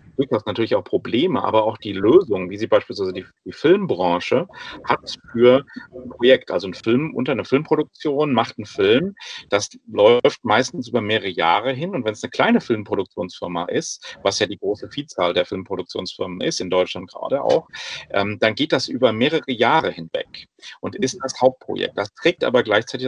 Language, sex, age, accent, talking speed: German, male, 40-59, German, 180 wpm